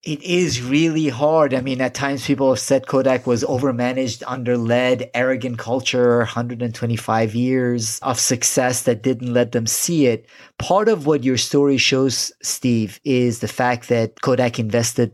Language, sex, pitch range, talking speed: English, male, 120-145 Hz, 160 wpm